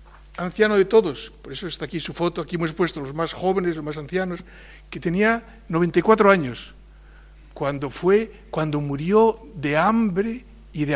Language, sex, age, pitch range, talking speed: Spanish, male, 60-79, 140-180 Hz, 165 wpm